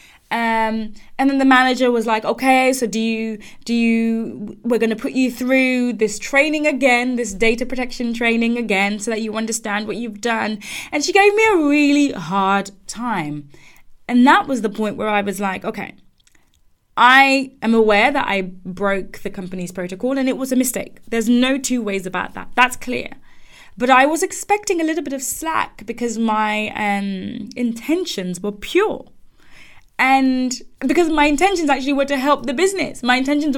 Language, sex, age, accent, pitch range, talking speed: English, female, 20-39, British, 210-265 Hz, 180 wpm